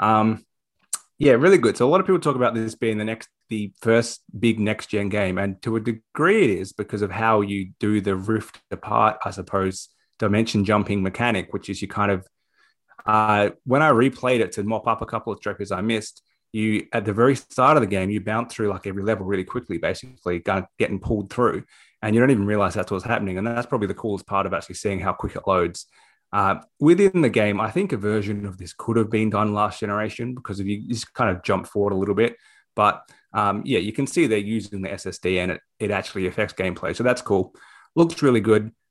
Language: English